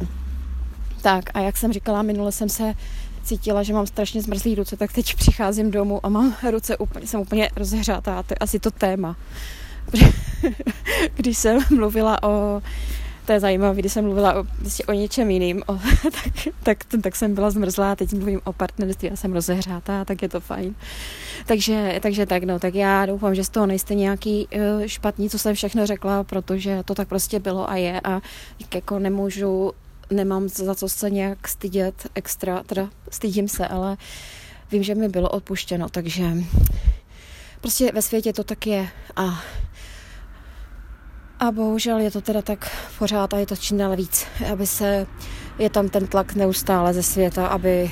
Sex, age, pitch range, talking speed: female, 20-39, 185-210 Hz, 170 wpm